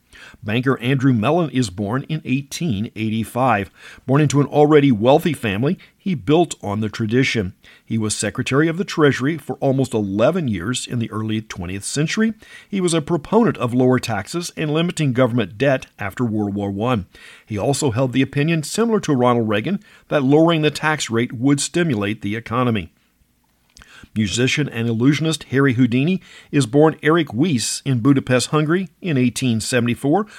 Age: 50-69